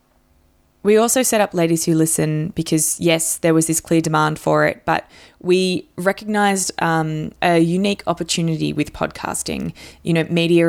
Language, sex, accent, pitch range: English, female, Australian, 155-180 Hz